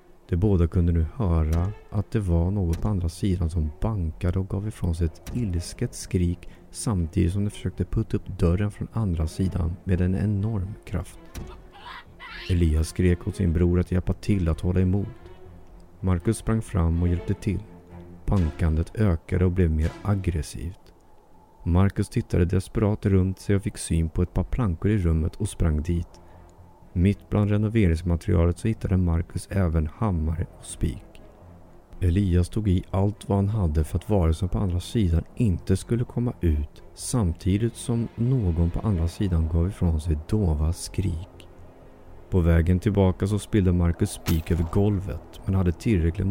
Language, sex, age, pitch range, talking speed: Swedish, male, 40-59, 85-100 Hz, 165 wpm